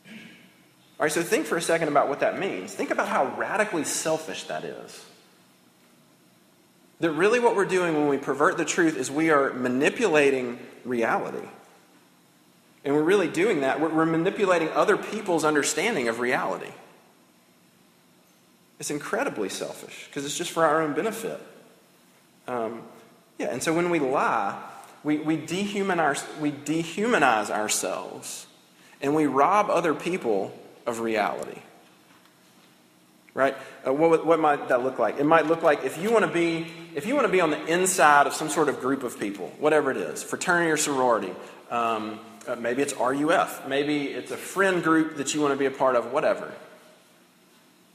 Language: English